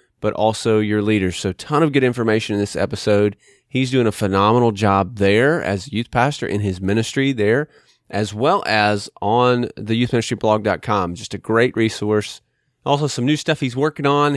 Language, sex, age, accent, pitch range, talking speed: English, male, 30-49, American, 100-125 Hz, 180 wpm